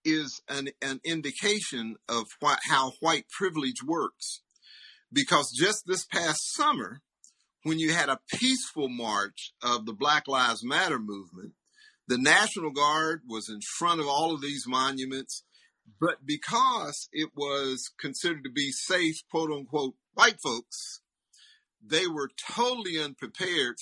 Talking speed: 135 wpm